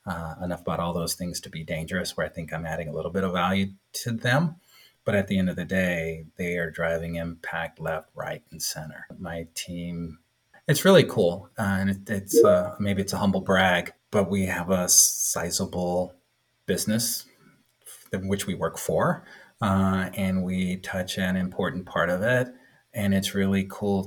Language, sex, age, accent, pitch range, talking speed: English, male, 30-49, American, 90-100 Hz, 185 wpm